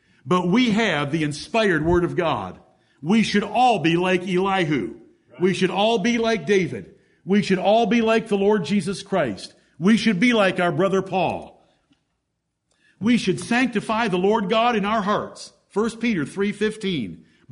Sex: male